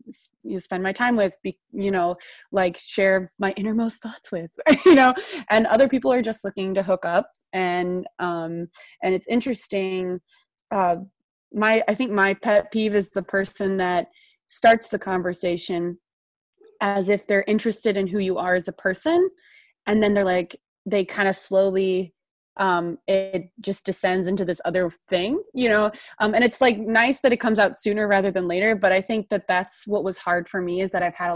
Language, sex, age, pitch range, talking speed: English, female, 20-39, 185-225 Hz, 195 wpm